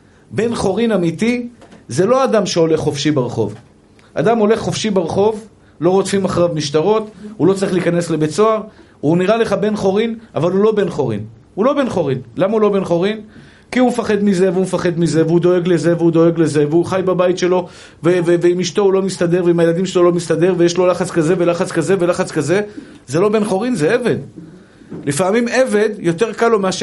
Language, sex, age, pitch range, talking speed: Hebrew, male, 50-69, 170-220 Hz, 200 wpm